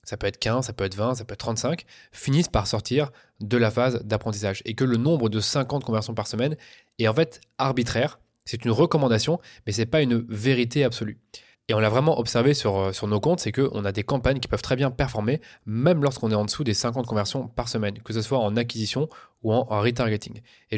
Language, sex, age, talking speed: French, male, 20-39, 230 wpm